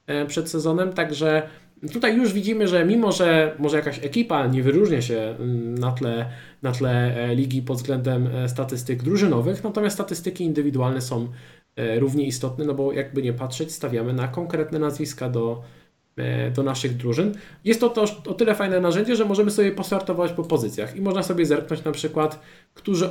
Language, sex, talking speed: Polish, male, 160 wpm